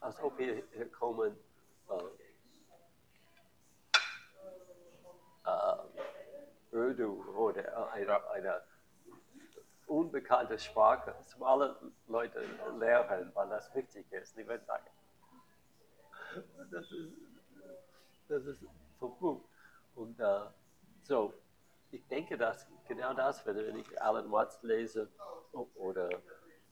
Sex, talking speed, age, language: male, 95 wpm, 60-79, German